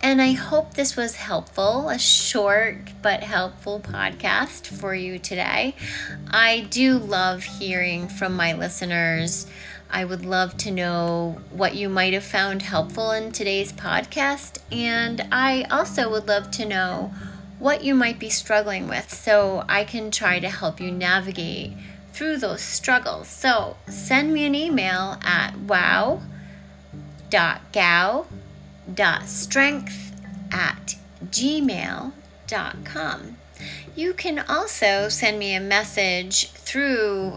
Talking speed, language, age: 125 wpm, English, 30-49